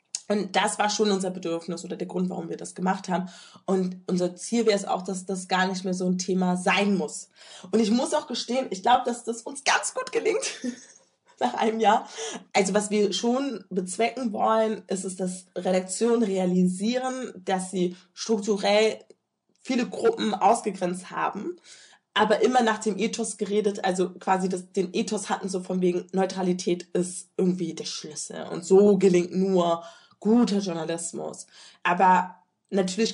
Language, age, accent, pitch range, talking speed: German, 20-39, German, 180-215 Hz, 165 wpm